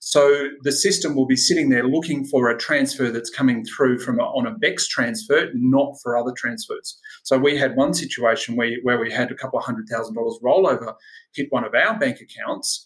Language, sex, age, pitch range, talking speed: English, male, 30-49, 125-150 Hz, 200 wpm